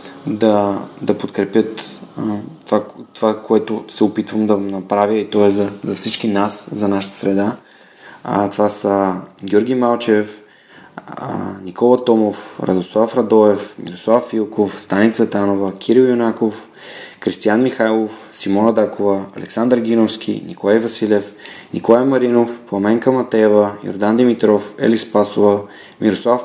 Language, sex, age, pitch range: Bulgarian, male, 20-39, 100-115 Hz